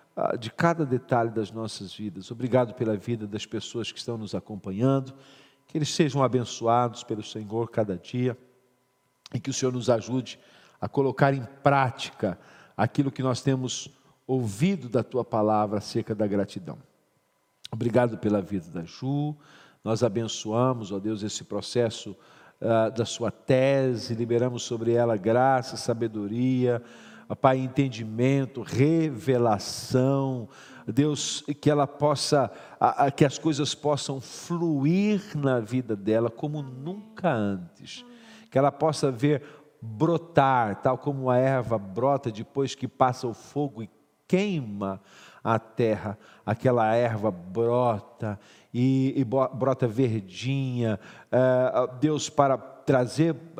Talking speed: 125 wpm